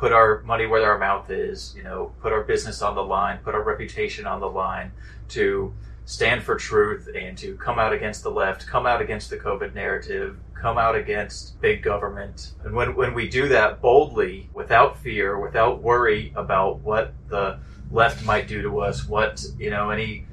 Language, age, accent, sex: English, 30-49, American, male